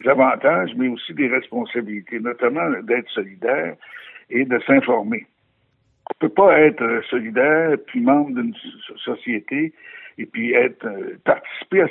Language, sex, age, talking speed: French, male, 60-79, 140 wpm